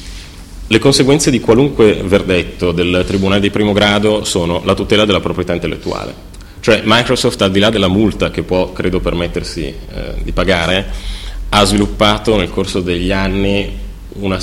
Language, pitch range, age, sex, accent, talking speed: Italian, 85-100 Hz, 30-49, male, native, 155 wpm